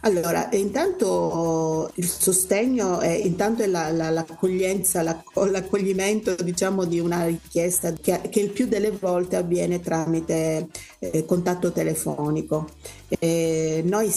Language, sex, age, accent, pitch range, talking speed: Italian, female, 40-59, native, 165-195 Hz, 125 wpm